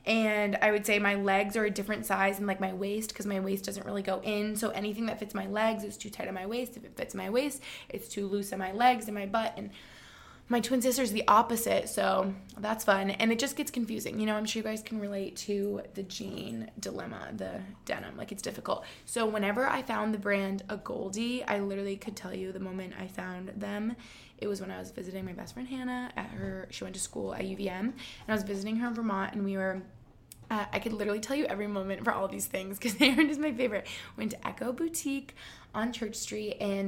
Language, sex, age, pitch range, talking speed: English, female, 20-39, 195-225 Hz, 245 wpm